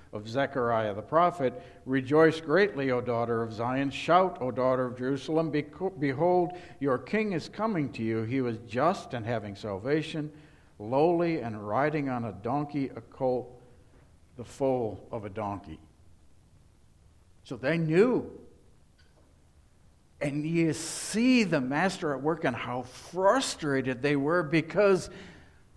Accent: American